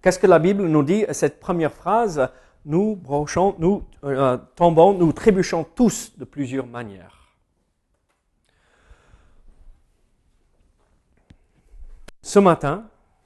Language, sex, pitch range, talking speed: French, male, 125-185 Hz, 100 wpm